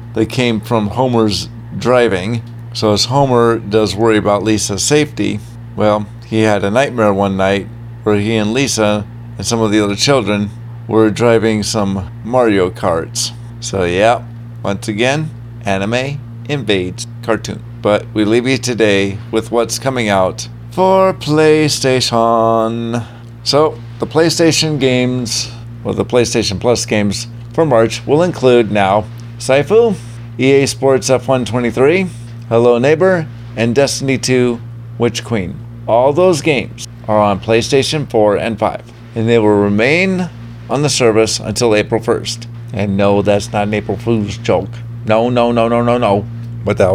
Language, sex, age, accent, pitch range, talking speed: English, male, 50-69, American, 110-120 Hz, 145 wpm